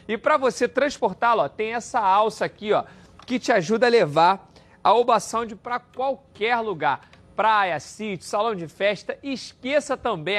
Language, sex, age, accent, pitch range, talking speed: Portuguese, male, 40-59, Brazilian, 200-250 Hz, 160 wpm